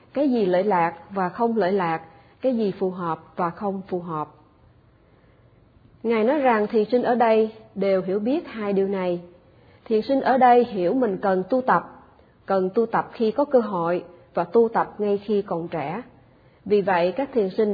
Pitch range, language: 175-235 Hz, Vietnamese